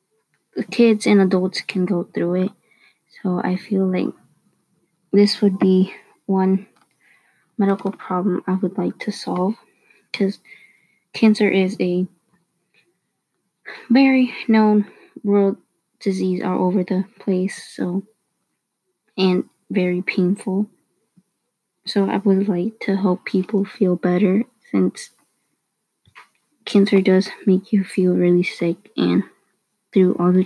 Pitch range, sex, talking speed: 180-205 Hz, female, 115 wpm